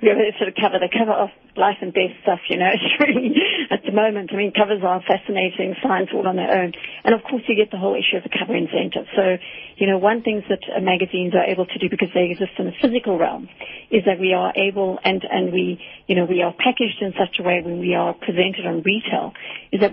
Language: English